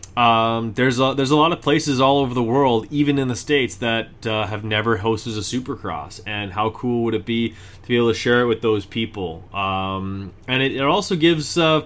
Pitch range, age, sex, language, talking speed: 105-125 Hz, 20-39, male, English, 230 wpm